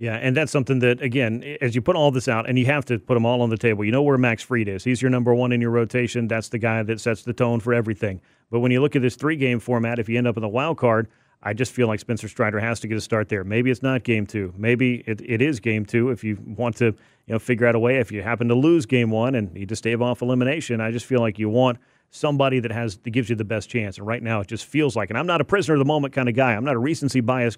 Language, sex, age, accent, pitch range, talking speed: English, male, 40-59, American, 115-130 Hz, 315 wpm